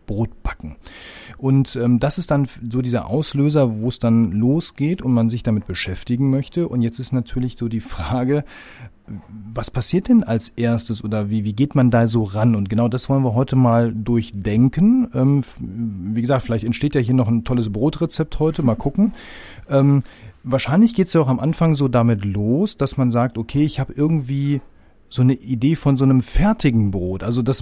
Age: 40-59